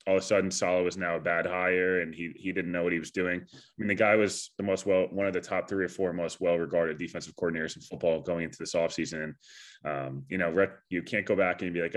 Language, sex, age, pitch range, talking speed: English, male, 20-39, 85-95 Hz, 275 wpm